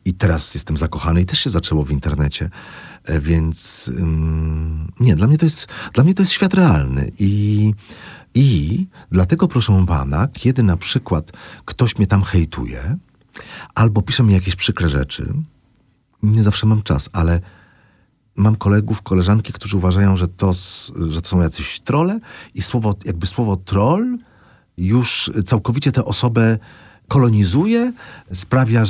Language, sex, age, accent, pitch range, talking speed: Polish, male, 40-59, native, 90-125 Hz, 140 wpm